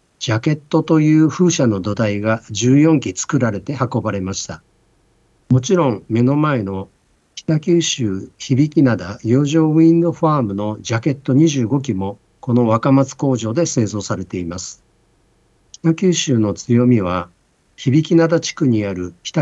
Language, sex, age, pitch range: Japanese, male, 50-69, 105-155 Hz